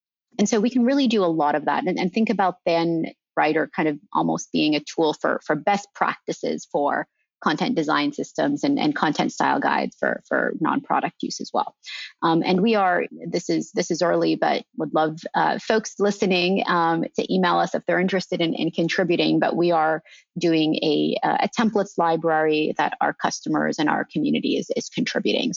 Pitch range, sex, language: 160-210 Hz, female, English